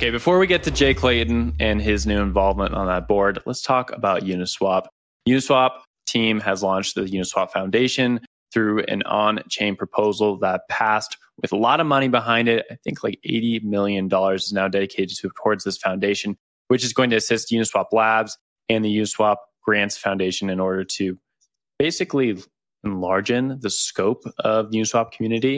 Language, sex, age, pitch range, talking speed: English, male, 20-39, 95-115 Hz, 170 wpm